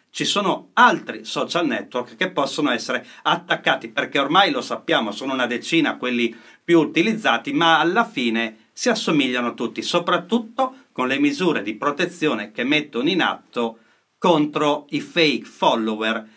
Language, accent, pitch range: Italian, native, 125-195 Hz